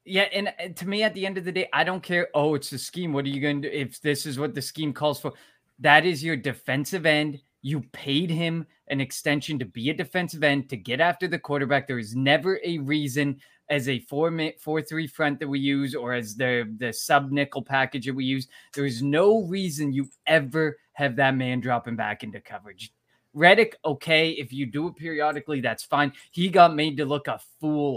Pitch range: 130-155 Hz